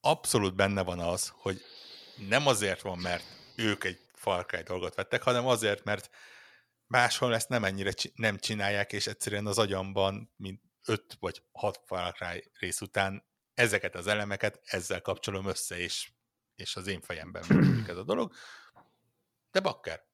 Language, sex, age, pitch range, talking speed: Hungarian, male, 60-79, 90-110 Hz, 155 wpm